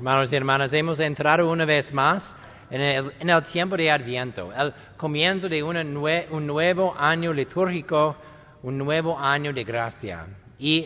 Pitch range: 130-160 Hz